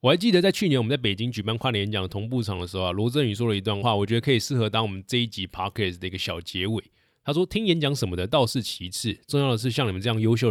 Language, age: Chinese, 20-39